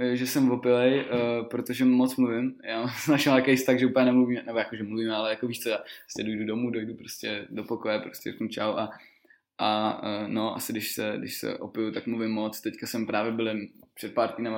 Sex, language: male, Czech